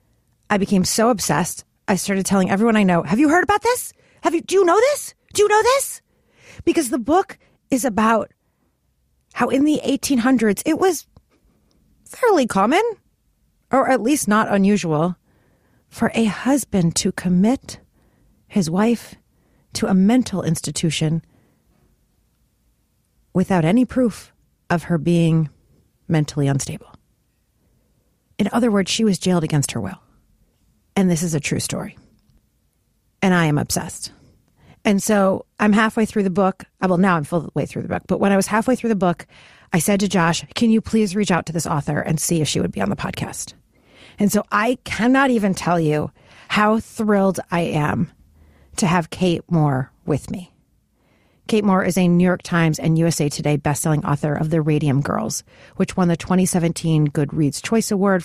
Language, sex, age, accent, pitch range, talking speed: English, female, 40-59, American, 160-220 Hz, 170 wpm